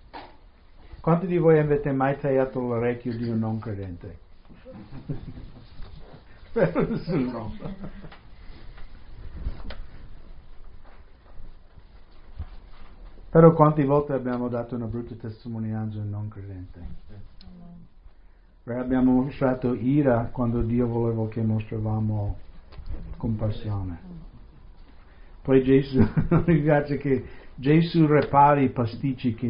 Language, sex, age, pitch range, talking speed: English, male, 60-79, 95-135 Hz, 85 wpm